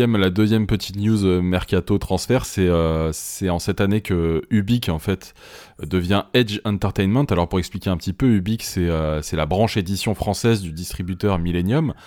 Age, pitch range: 20-39, 85-105 Hz